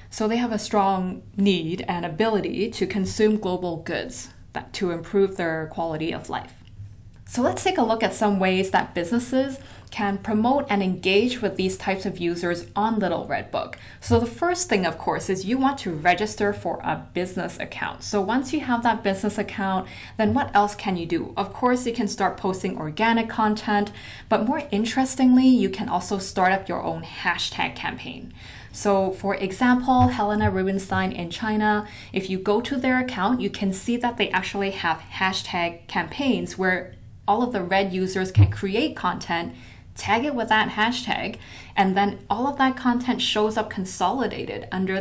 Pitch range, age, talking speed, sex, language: 185-225 Hz, 20-39, 180 wpm, female, English